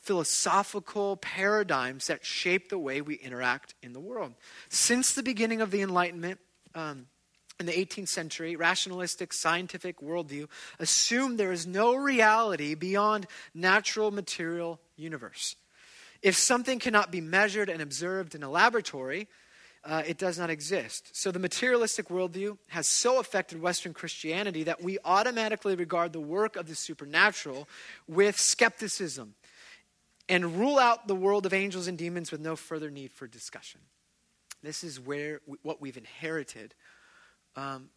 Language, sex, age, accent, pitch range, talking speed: English, male, 30-49, American, 160-200 Hz, 145 wpm